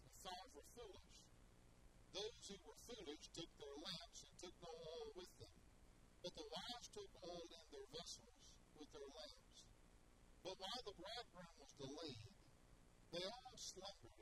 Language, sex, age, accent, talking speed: English, male, 50-69, American, 150 wpm